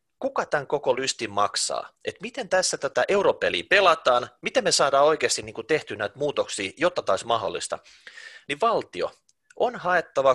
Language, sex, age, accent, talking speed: Finnish, male, 30-49, native, 160 wpm